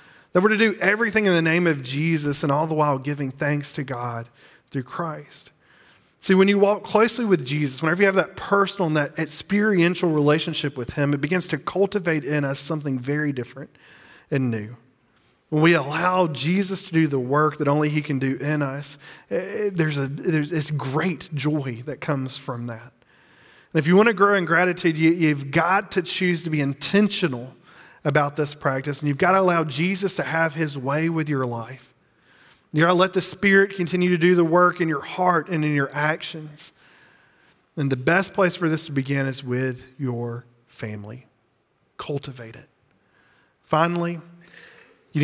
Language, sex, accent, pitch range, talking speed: English, male, American, 135-175 Hz, 185 wpm